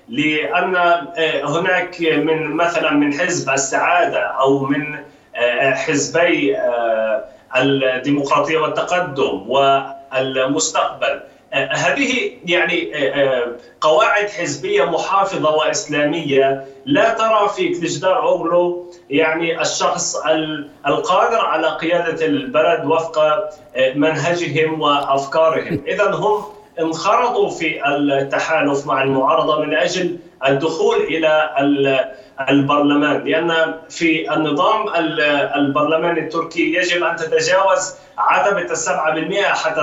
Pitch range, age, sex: 140-175 Hz, 30-49, male